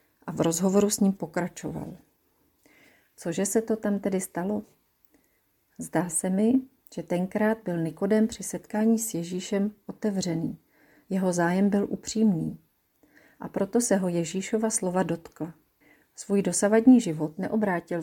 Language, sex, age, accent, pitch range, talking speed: Czech, female, 40-59, native, 165-210 Hz, 130 wpm